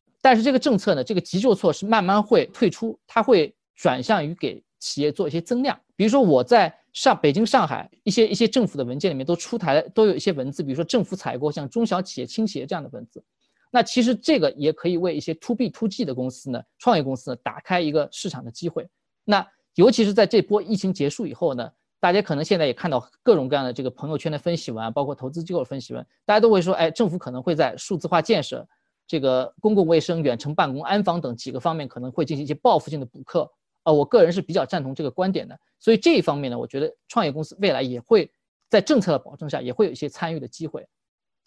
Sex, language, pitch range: male, Chinese, 150-220 Hz